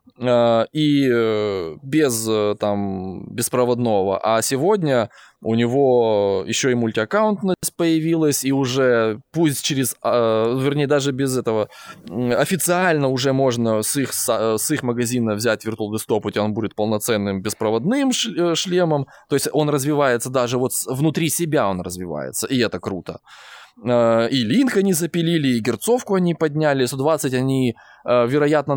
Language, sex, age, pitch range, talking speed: Russian, male, 20-39, 115-155 Hz, 125 wpm